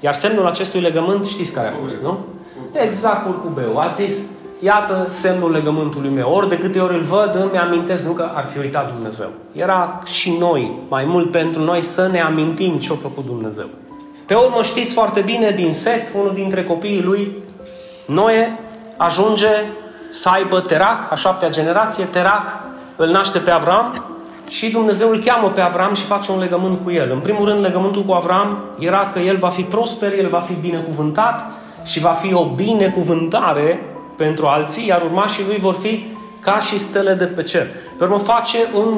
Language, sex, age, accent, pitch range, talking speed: Romanian, male, 30-49, native, 170-205 Hz, 180 wpm